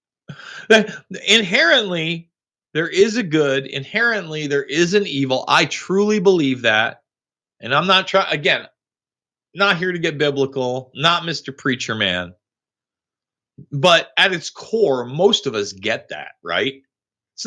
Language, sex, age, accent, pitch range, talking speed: English, male, 30-49, American, 135-195 Hz, 135 wpm